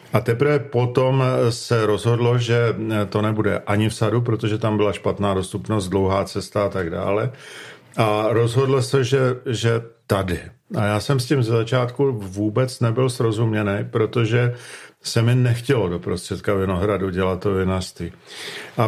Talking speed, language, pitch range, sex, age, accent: 155 wpm, Czech, 105-125 Hz, male, 50-69, native